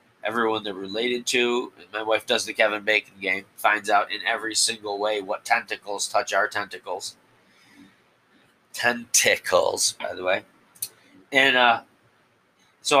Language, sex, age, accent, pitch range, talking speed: English, male, 30-49, American, 105-145 Hz, 135 wpm